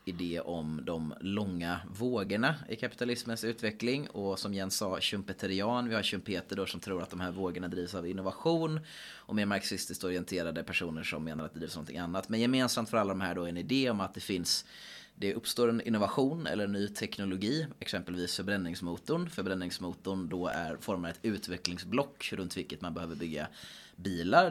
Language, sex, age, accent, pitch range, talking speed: Swedish, male, 30-49, native, 90-110 Hz, 180 wpm